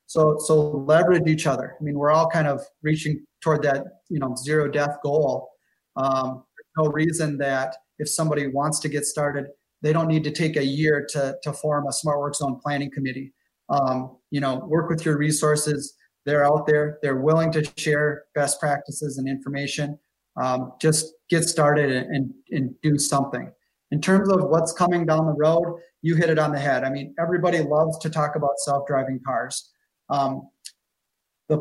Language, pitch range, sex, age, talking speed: English, 140-155 Hz, male, 30-49, 185 wpm